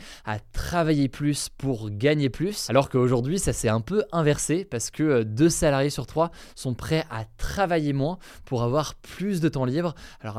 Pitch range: 120-150 Hz